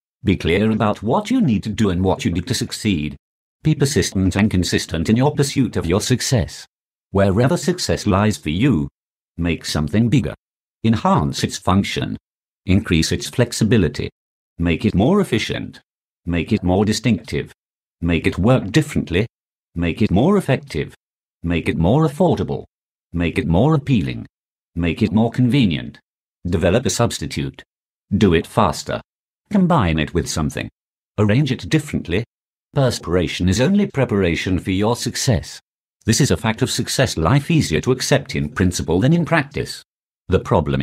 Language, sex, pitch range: English, male, 85-125 Hz